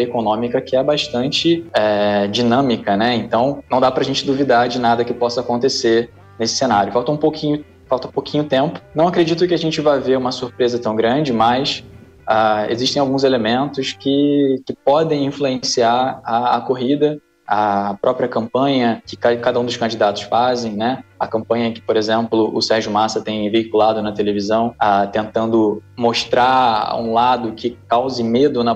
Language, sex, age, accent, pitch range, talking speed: Portuguese, male, 20-39, Brazilian, 110-135 Hz, 165 wpm